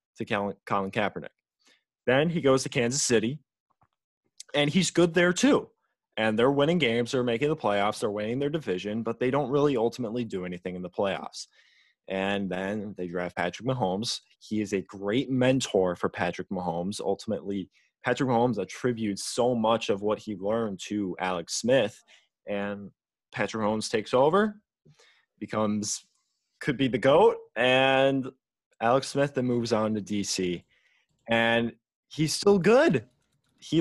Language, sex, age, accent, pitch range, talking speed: English, male, 20-39, American, 105-145 Hz, 155 wpm